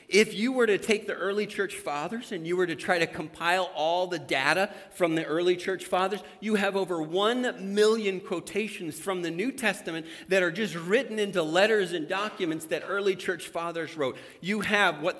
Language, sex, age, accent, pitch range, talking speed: English, male, 40-59, American, 155-200 Hz, 195 wpm